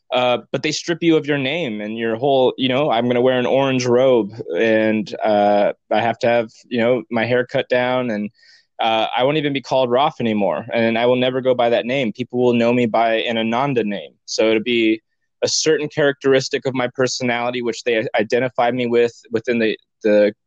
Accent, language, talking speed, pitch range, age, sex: American, English, 220 wpm, 110-130 Hz, 20-39, male